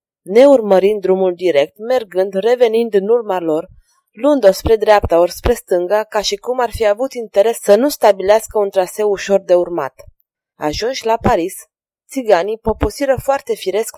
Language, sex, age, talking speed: Romanian, female, 20-39, 165 wpm